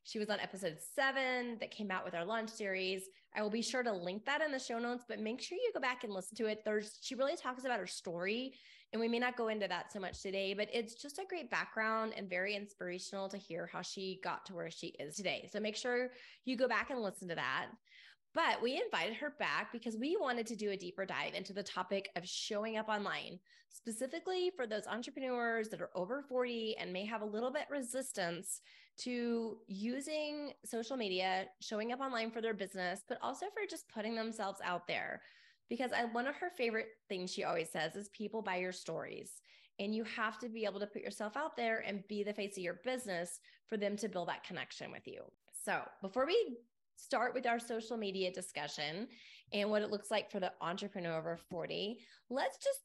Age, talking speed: 20-39, 220 wpm